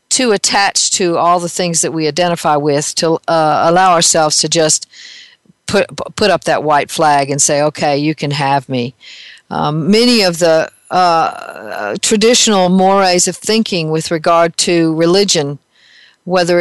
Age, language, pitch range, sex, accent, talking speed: 50-69, English, 160-185 Hz, female, American, 155 wpm